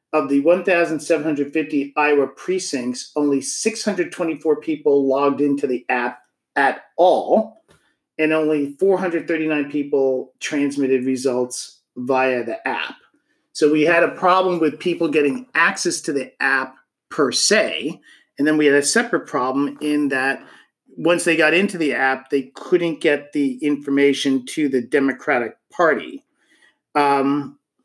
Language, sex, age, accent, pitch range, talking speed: English, male, 40-59, American, 135-170 Hz, 135 wpm